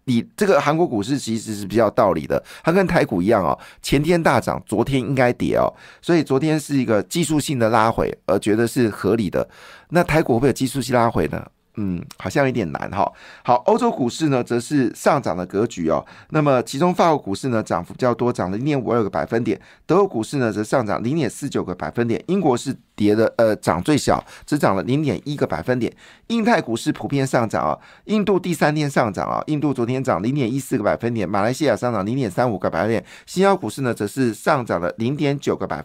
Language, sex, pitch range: Chinese, male, 115-155 Hz